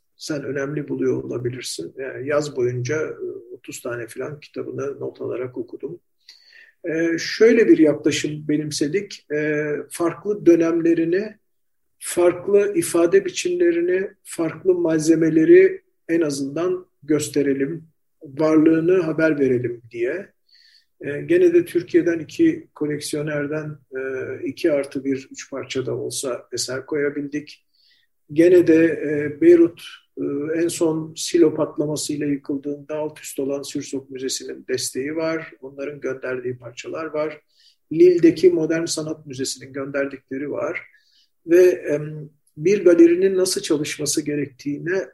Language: Turkish